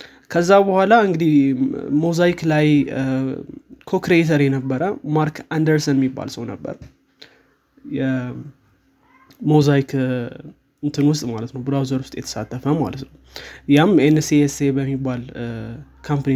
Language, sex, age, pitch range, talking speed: Amharic, male, 20-39, 135-155 Hz, 35 wpm